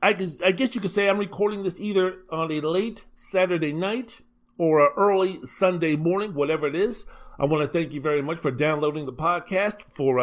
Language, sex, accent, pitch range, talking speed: English, male, American, 160-225 Hz, 200 wpm